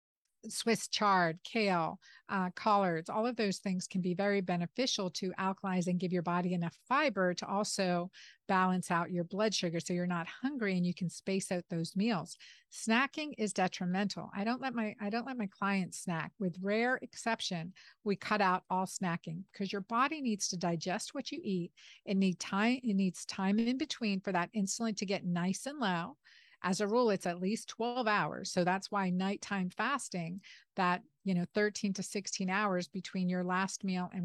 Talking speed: 195 wpm